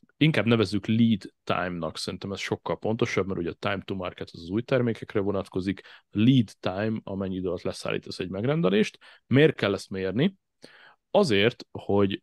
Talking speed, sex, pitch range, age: 160 wpm, male, 95-115 Hz, 30-49